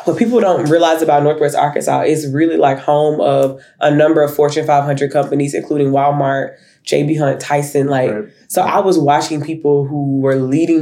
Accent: American